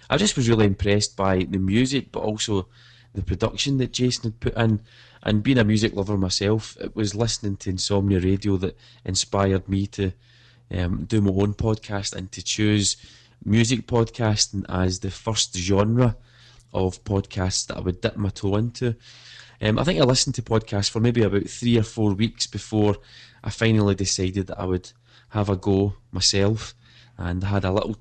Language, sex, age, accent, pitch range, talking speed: English, male, 20-39, British, 100-120 Hz, 180 wpm